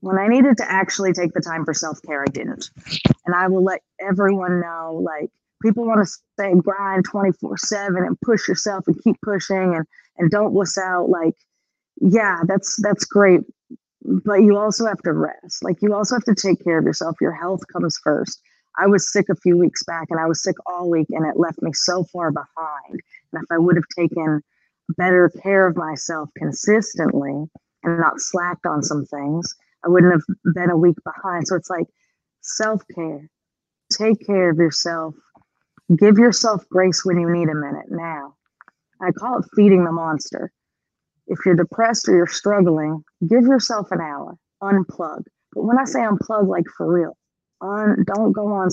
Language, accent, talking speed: English, American, 185 wpm